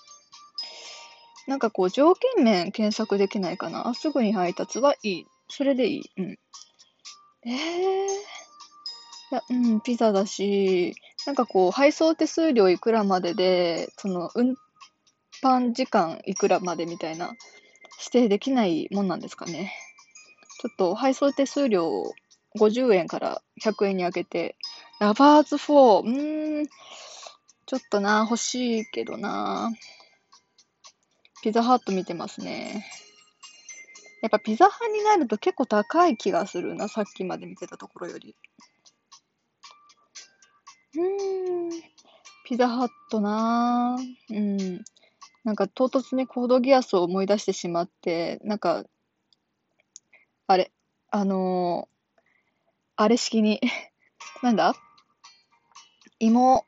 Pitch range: 200-295 Hz